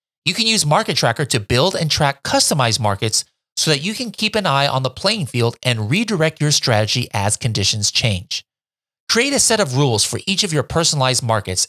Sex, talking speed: male, 205 wpm